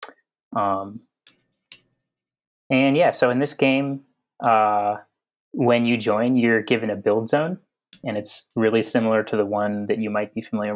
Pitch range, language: 105-115 Hz, English